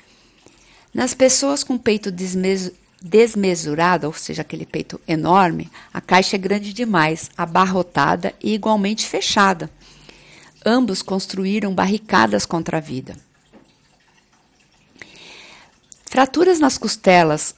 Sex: female